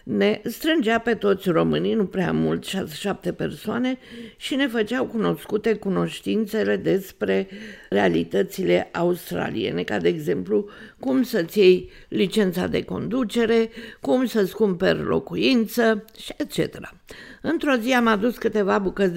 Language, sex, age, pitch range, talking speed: Romanian, female, 50-69, 190-240 Hz, 120 wpm